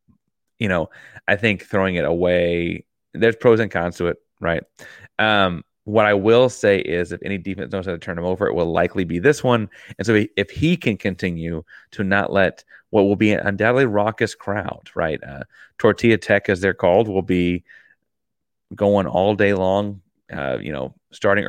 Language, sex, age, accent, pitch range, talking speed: English, male, 30-49, American, 90-105 Hz, 190 wpm